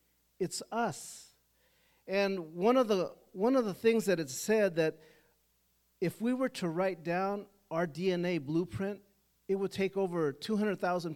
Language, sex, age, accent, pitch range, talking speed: English, male, 50-69, American, 155-200 Hz, 150 wpm